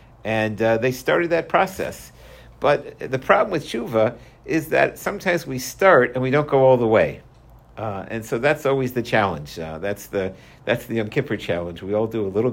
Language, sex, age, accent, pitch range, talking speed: English, male, 60-79, American, 110-140 Hz, 205 wpm